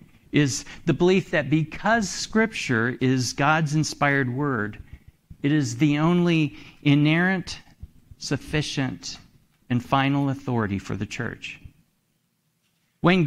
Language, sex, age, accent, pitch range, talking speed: English, male, 50-69, American, 120-165 Hz, 105 wpm